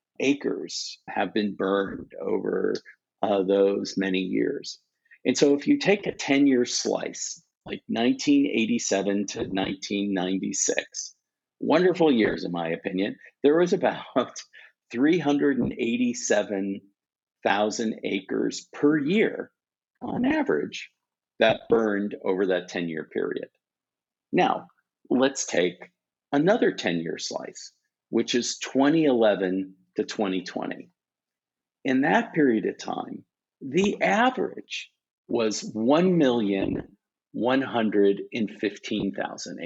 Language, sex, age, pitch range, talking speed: English, male, 50-69, 100-140 Hz, 90 wpm